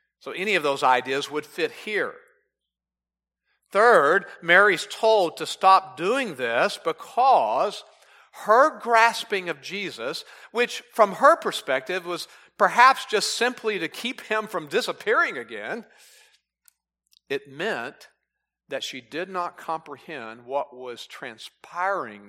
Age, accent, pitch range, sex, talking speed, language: 50-69, American, 120-190 Hz, male, 120 wpm, English